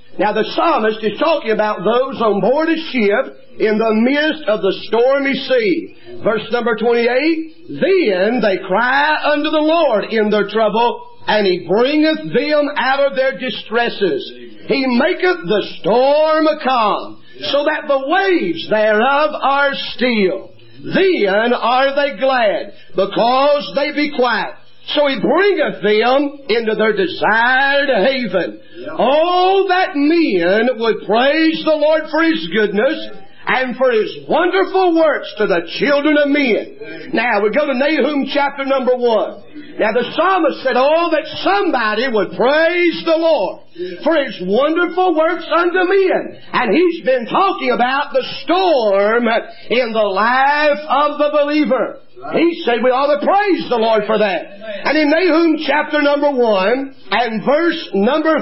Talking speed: 150 wpm